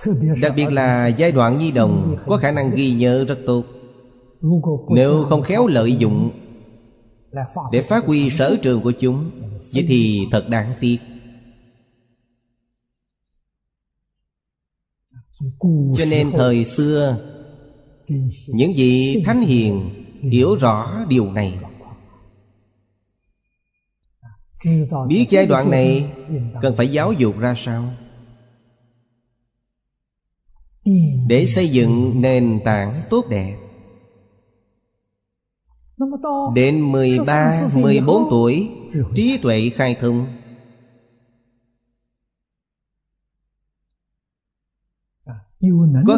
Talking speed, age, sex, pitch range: 90 wpm, 30-49, male, 115-135 Hz